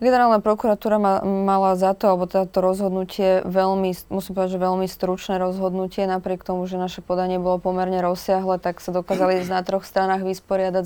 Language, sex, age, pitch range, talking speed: Slovak, female, 20-39, 175-190 Hz, 170 wpm